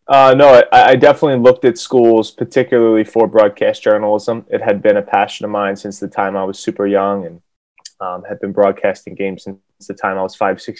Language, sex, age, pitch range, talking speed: English, male, 20-39, 95-115 Hz, 215 wpm